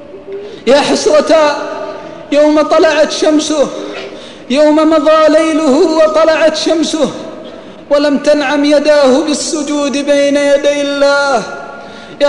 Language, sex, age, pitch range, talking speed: Arabic, male, 20-39, 300-340 Hz, 90 wpm